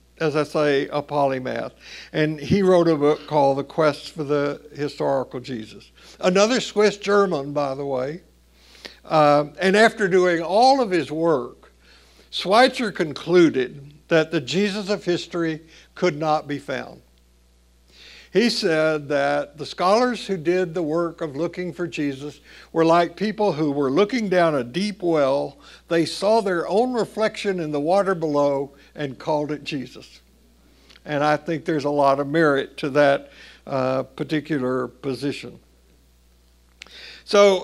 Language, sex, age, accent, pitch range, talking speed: English, male, 60-79, American, 140-175 Hz, 145 wpm